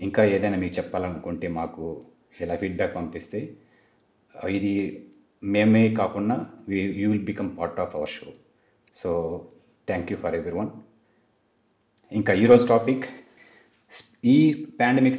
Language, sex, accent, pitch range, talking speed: Telugu, male, native, 95-120 Hz, 115 wpm